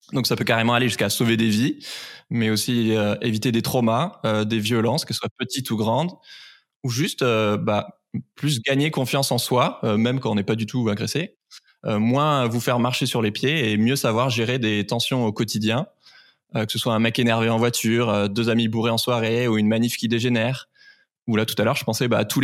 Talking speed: 235 wpm